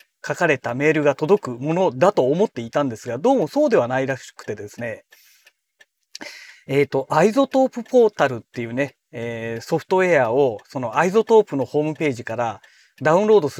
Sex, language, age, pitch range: male, Japanese, 40-59, 140-205 Hz